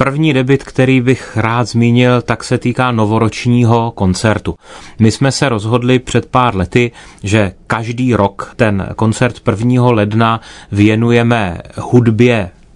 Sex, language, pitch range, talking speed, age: male, Czech, 100-120 Hz, 125 wpm, 30-49